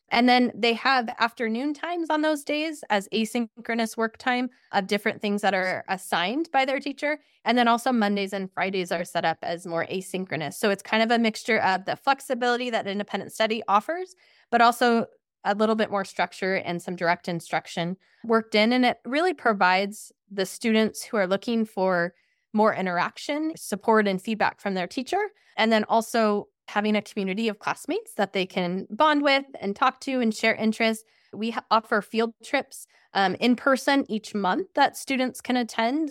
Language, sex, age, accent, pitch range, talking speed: English, female, 20-39, American, 200-255 Hz, 185 wpm